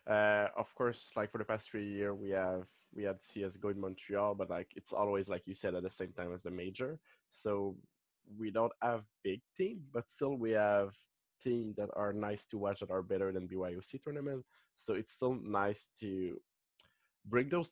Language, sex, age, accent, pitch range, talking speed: English, male, 20-39, Norwegian, 95-110 Hz, 200 wpm